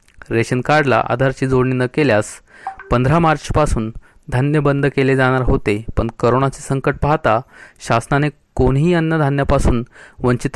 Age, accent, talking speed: 30-49, native, 125 wpm